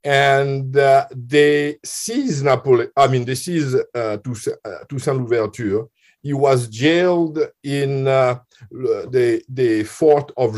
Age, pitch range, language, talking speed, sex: 50-69, 120-145 Hz, English, 125 wpm, male